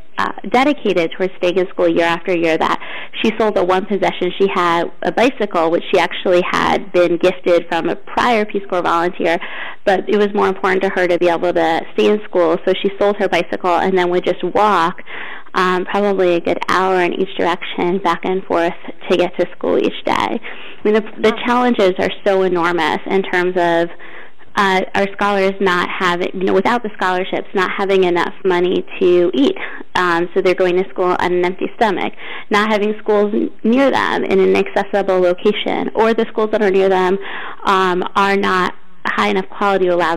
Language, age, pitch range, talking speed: English, 20-39, 180-205 Hz, 195 wpm